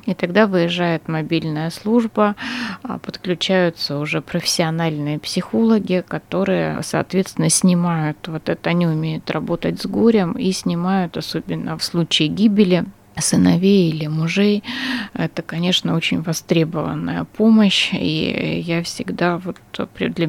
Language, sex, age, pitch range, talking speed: Russian, female, 20-39, 165-190 Hz, 110 wpm